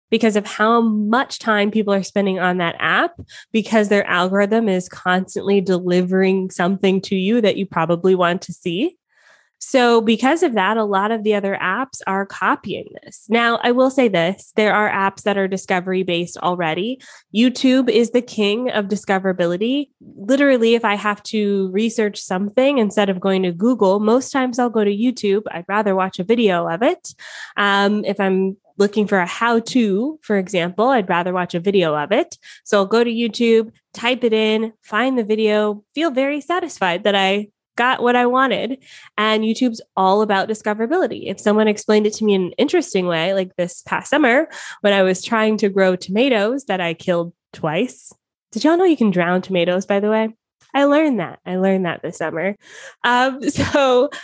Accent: American